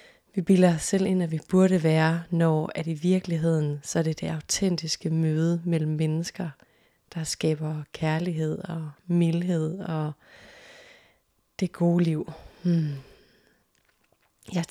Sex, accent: female, native